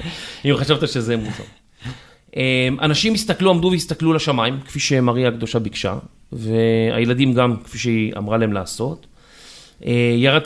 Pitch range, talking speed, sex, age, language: 120-170 Hz, 120 wpm, male, 30-49, Hebrew